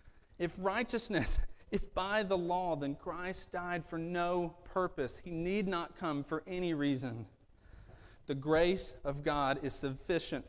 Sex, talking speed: male, 145 wpm